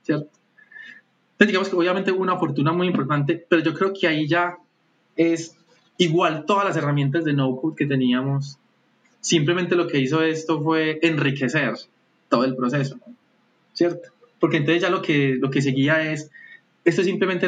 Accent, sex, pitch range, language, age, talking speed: Colombian, male, 140-175 Hz, Spanish, 20-39, 165 wpm